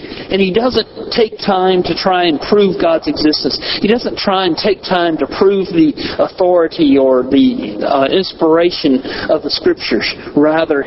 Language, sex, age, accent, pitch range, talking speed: English, male, 50-69, American, 140-195 Hz, 160 wpm